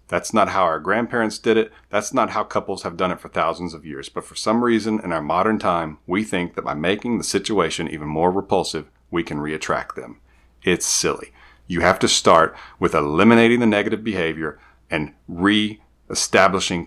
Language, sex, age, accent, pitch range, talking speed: English, male, 40-59, American, 80-105 Hz, 190 wpm